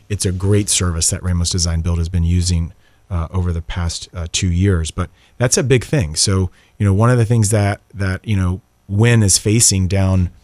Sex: male